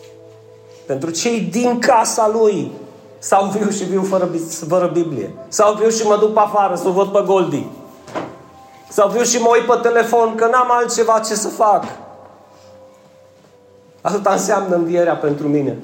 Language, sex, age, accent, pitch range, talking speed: Romanian, male, 30-49, native, 170-215 Hz, 160 wpm